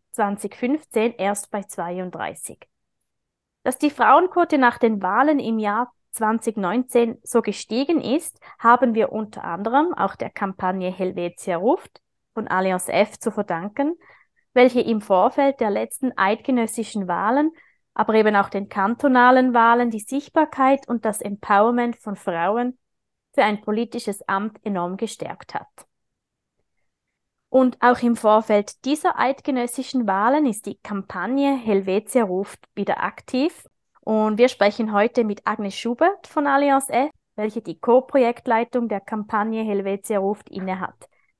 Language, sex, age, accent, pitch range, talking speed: German, female, 20-39, German, 200-255 Hz, 130 wpm